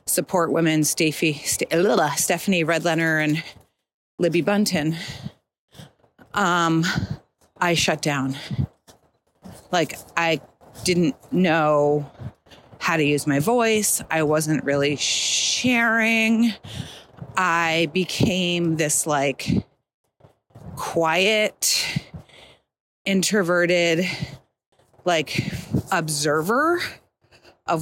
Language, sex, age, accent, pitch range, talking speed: English, female, 30-49, American, 160-205 Hz, 70 wpm